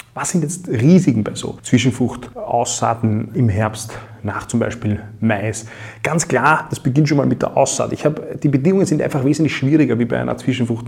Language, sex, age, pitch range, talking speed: German, male, 30-49, 120-140 Hz, 190 wpm